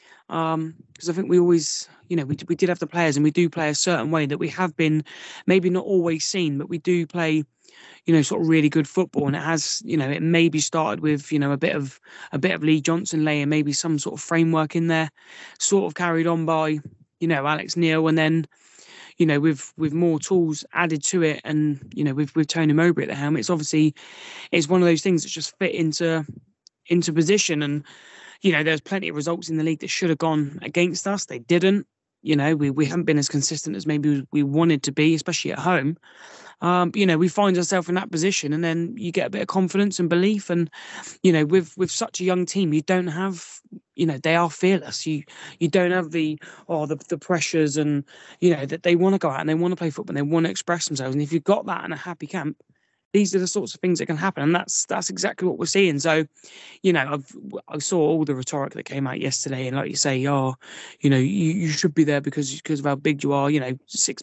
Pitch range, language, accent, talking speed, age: 150-175 Hz, English, British, 255 wpm, 20-39